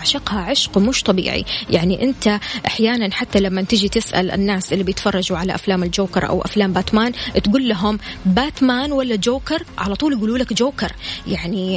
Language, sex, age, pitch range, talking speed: Arabic, female, 20-39, 190-240 Hz, 160 wpm